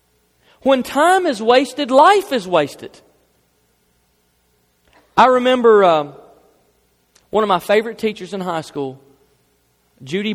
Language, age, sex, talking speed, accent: English, 40-59, male, 110 wpm, American